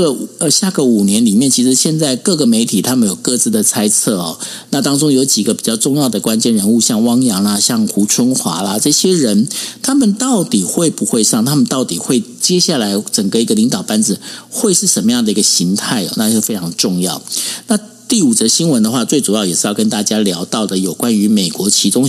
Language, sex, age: Chinese, male, 50-69